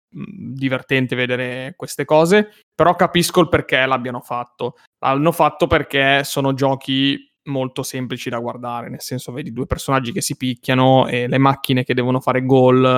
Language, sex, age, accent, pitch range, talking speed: Italian, male, 20-39, native, 130-150 Hz, 155 wpm